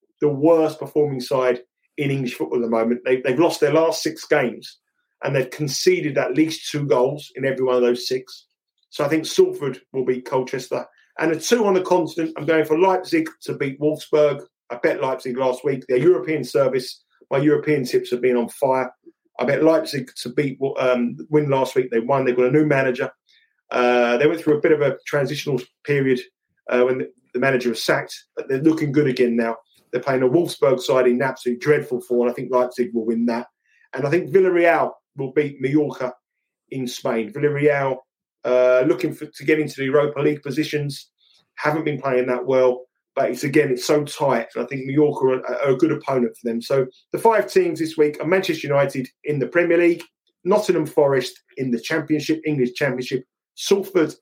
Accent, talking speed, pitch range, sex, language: British, 200 wpm, 125-155 Hz, male, English